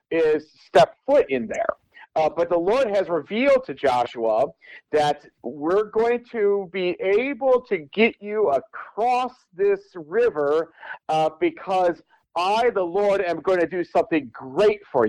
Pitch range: 150-230 Hz